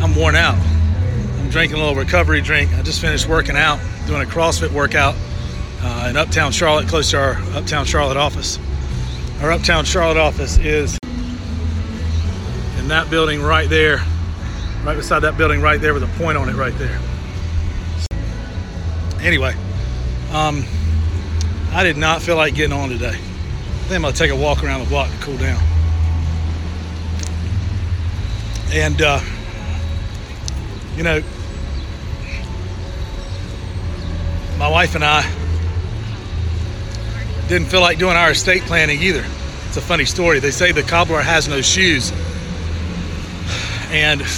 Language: English